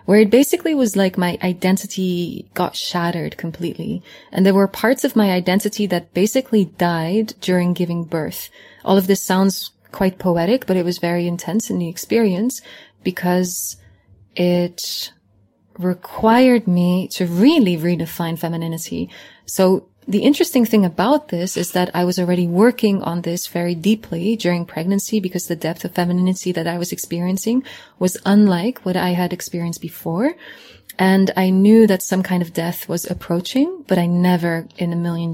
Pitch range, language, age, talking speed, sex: 175-210 Hz, English, 20-39, 160 wpm, female